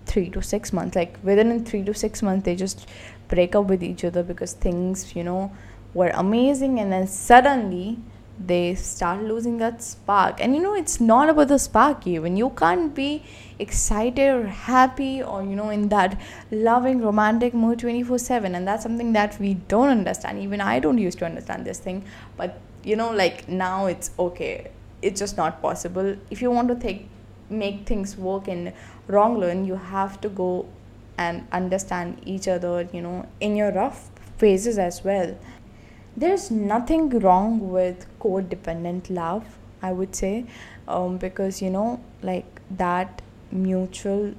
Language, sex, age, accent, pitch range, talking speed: English, female, 10-29, Indian, 180-225 Hz, 170 wpm